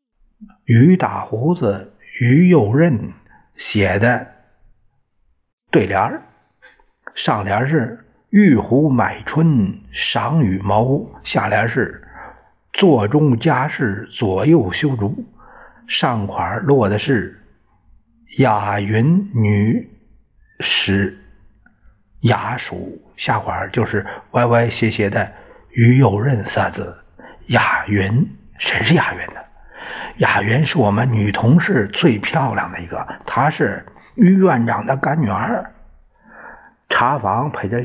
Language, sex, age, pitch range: Chinese, male, 50-69, 105-140 Hz